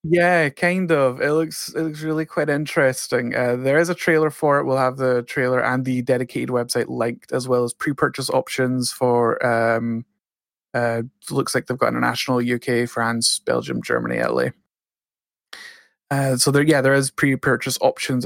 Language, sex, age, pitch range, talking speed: English, male, 20-39, 125-160 Hz, 170 wpm